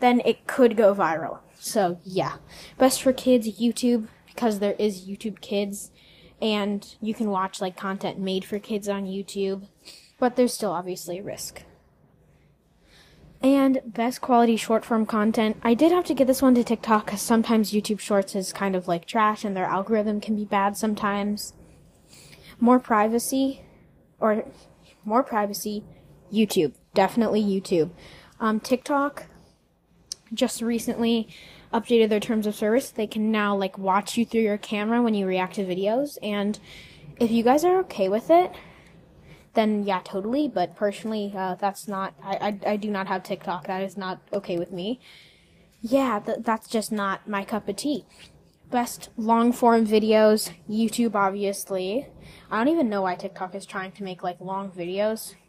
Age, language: 10-29, English